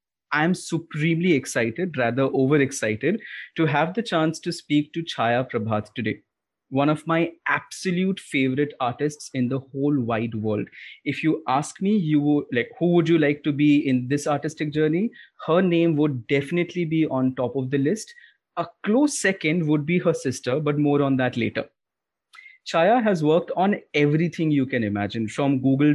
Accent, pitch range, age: Indian, 130-165 Hz, 20-39